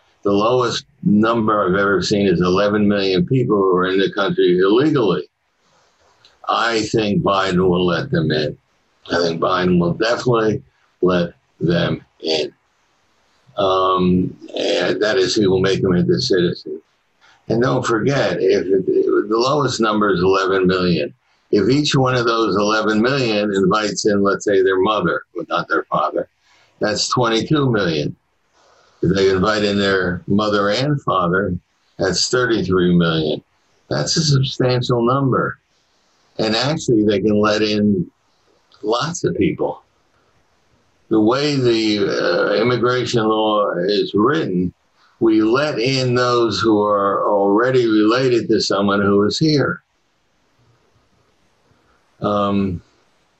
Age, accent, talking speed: 60-79, American, 135 wpm